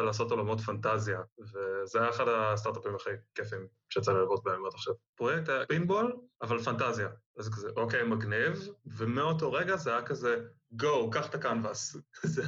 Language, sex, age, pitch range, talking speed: Hebrew, male, 20-39, 105-125 Hz, 170 wpm